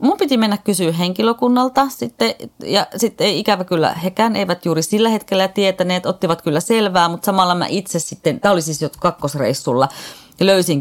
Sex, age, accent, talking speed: female, 30-49, native, 165 wpm